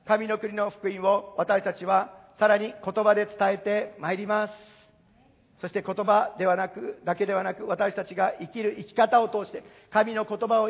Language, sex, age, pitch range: Japanese, male, 50-69, 195-225 Hz